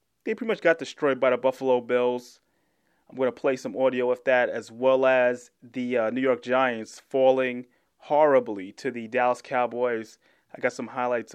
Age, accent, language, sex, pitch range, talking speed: 20-39, American, English, male, 125-145 Hz, 185 wpm